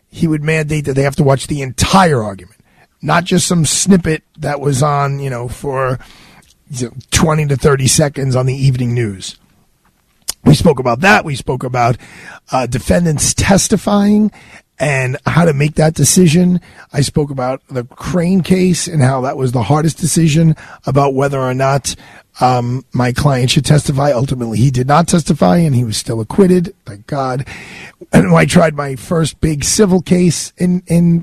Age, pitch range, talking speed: 40-59, 130-175 Hz, 170 wpm